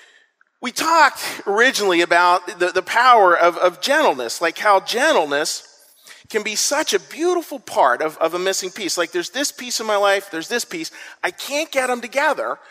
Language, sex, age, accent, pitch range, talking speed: English, male, 40-59, American, 160-235 Hz, 185 wpm